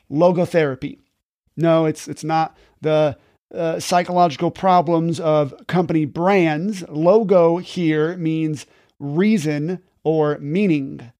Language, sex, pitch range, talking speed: English, male, 155-200 Hz, 95 wpm